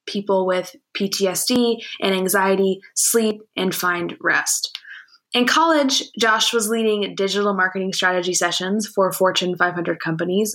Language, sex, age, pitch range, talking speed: English, female, 20-39, 180-225 Hz, 125 wpm